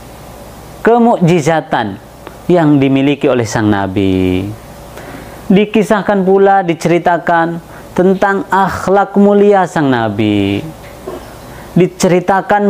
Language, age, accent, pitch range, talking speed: Indonesian, 30-49, native, 115-195 Hz, 70 wpm